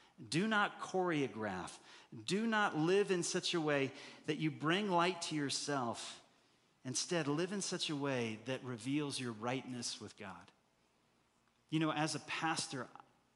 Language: English